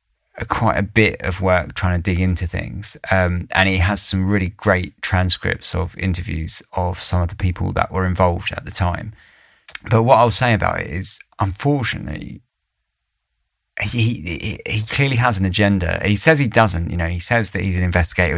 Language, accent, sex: English, British, male